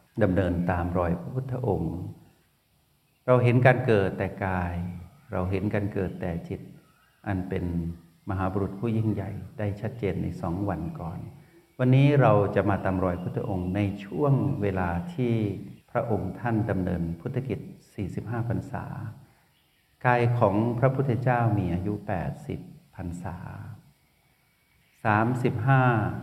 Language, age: Thai, 60-79